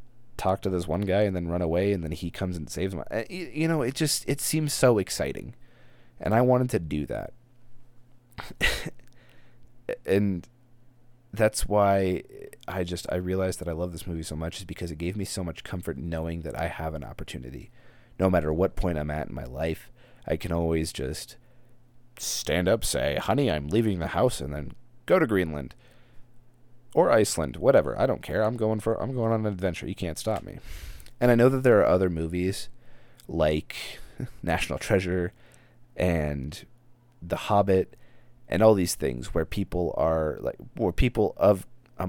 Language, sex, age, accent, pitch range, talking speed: English, male, 30-49, American, 85-120 Hz, 185 wpm